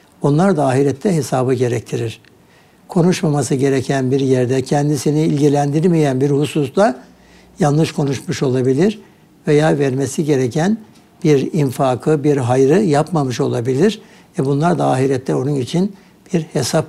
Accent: native